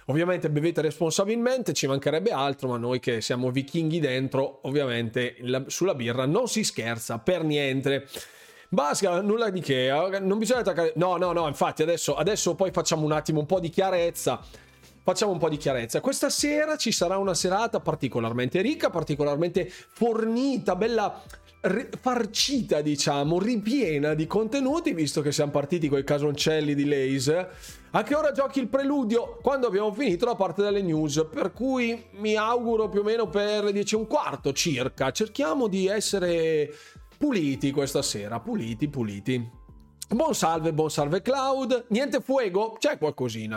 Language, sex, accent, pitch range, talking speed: Italian, male, native, 140-215 Hz, 155 wpm